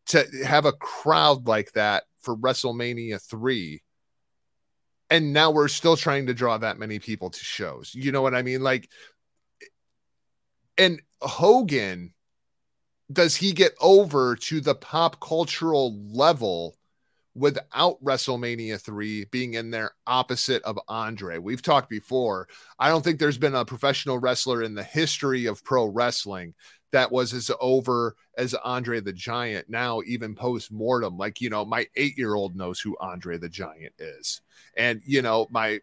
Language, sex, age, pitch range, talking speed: English, male, 30-49, 110-145 Hz, 150 wpm